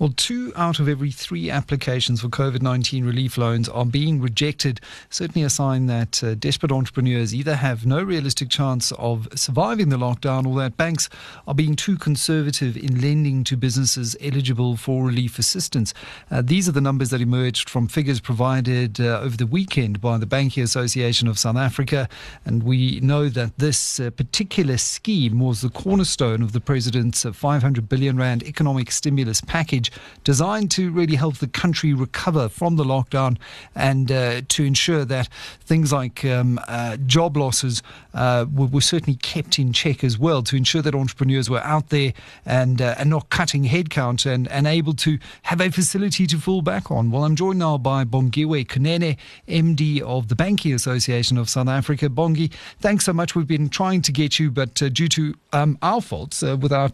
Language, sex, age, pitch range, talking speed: English, male, 40-59, 125-155 Hz, 185 wpm